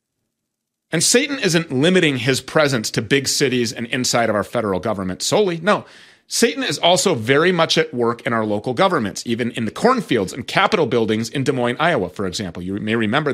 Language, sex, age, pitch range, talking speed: English, male, 30-49, 115-175 Hz, 200 wpm